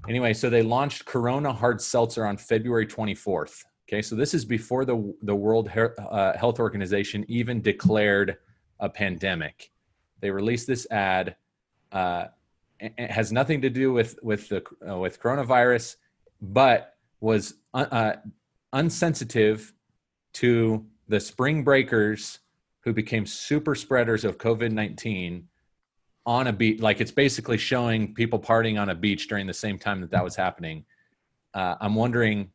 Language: English